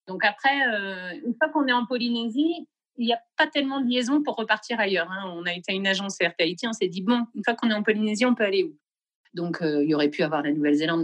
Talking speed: 255 wpm